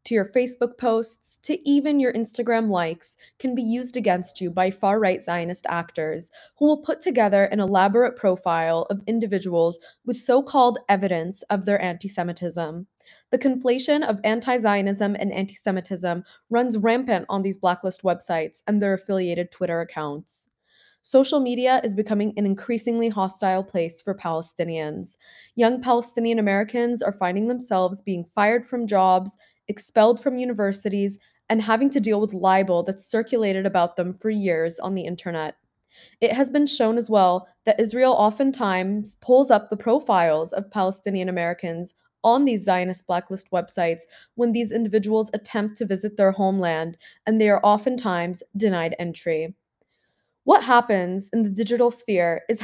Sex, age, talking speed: female, 20-39, 150 wpm